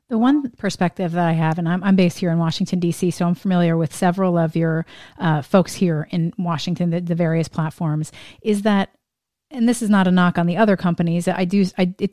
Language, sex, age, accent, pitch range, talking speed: English, female, 30-49, American, 165-185 Hz, 230 wpm